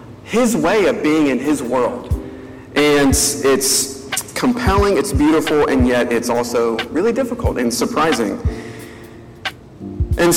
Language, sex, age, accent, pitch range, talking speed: English, male, 40-59, American, 125-170 Hz, 120 wpm